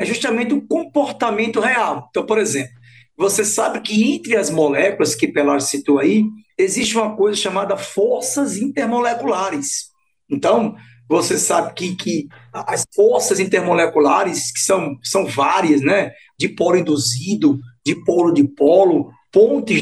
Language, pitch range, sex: Portuguese, 165-250 Hz, male